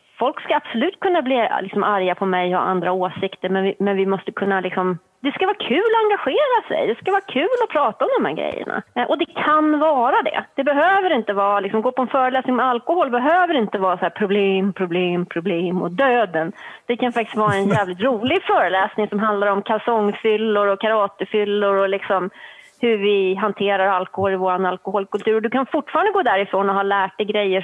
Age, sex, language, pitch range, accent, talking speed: 30-49, female, Swedish, 195-270 Hz, native, 210 wpm